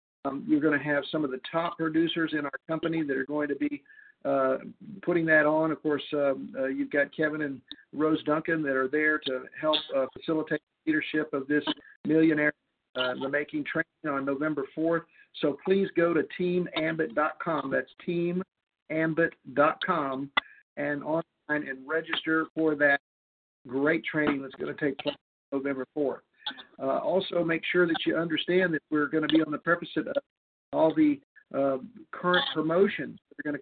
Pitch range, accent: 150-170 Hz, American